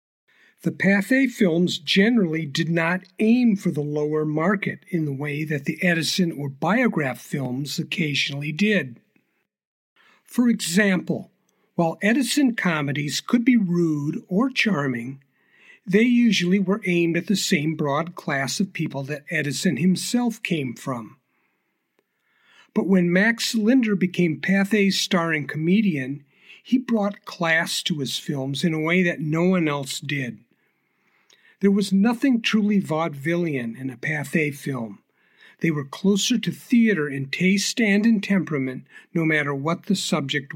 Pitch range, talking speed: 150-205 Hz, 140 wpm